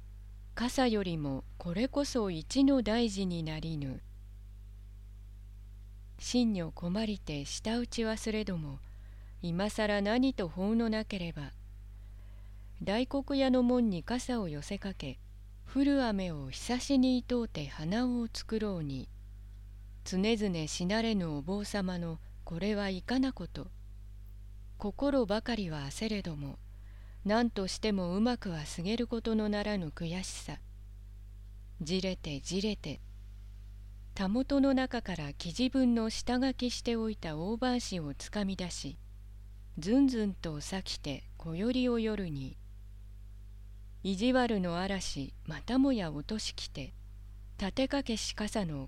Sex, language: female, Japanese